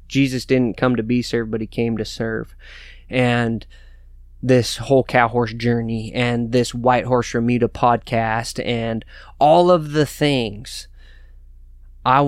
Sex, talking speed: male, 140 wpm